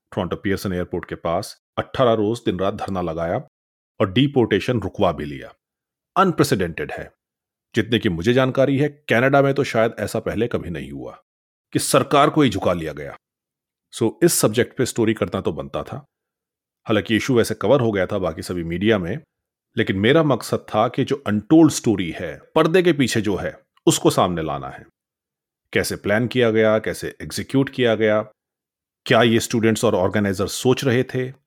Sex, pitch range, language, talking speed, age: male, 95-120 Hz, Punjabi, 175 wpm, 30-49